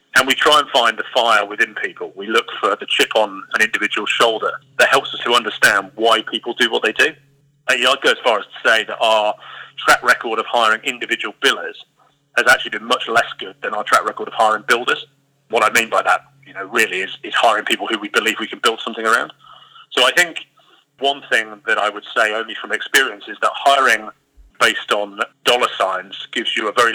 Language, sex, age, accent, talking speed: English, male, 30-49, British, 225 wpm